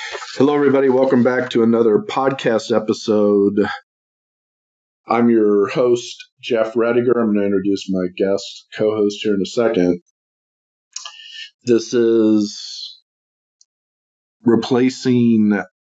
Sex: male